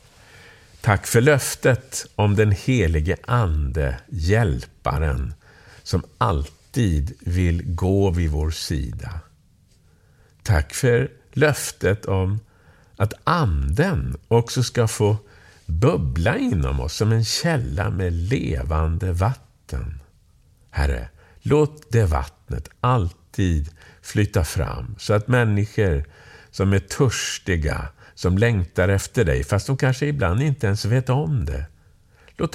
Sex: male